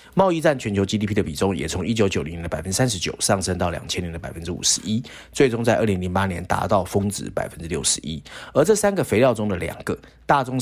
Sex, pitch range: male, 85-110 Hz